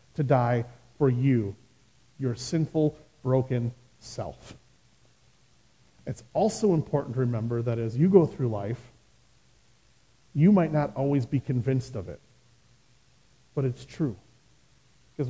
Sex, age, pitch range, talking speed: male, 40-59, 125-155 Hz, 120 wpm